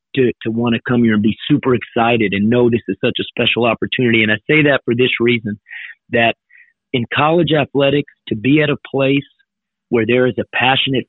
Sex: male